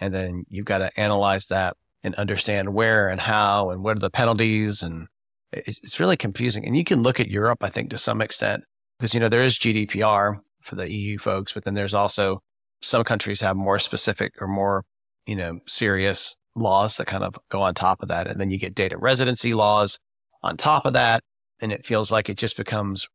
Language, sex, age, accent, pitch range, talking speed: English, male, 30-49, American, 100-115 Hz, 215 wpm